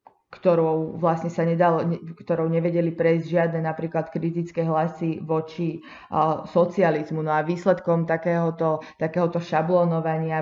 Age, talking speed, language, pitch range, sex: 20-39, 115 wpm, Slovak, 155-175 Hz, female